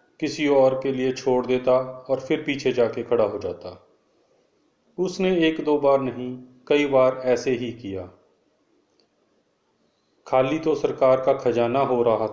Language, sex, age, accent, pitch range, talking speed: Hindi, male, 30-49, native, 120-140 Hz, 145 wpm